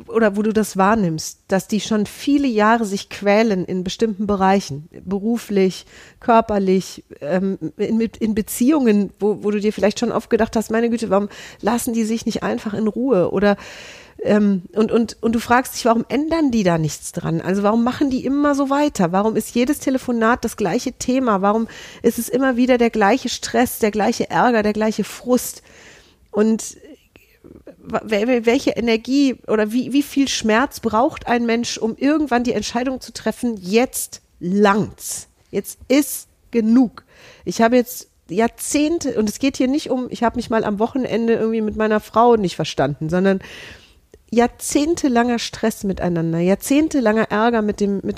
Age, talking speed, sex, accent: 40-59, 170 wpm, female, German